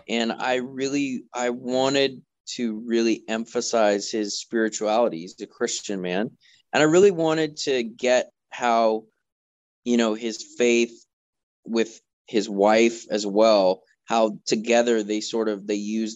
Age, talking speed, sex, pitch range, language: 20-39, 135 wpm, male, 105-120 Hz, English